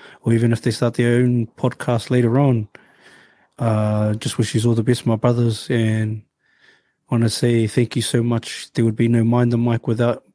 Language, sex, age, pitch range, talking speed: English, male, 20-39, 115-135 Hz, 205 wpm